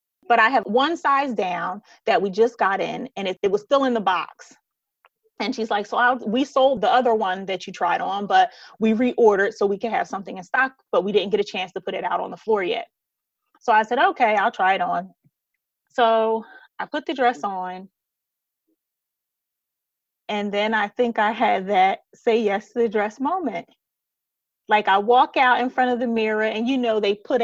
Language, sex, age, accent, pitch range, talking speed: English, female, 30-49, American, 210-275 Hz, 215 wpm